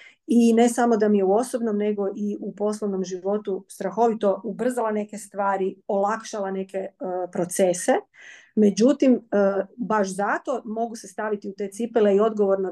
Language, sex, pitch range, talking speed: Croatian, female, 195-240 Hz, 155 wpm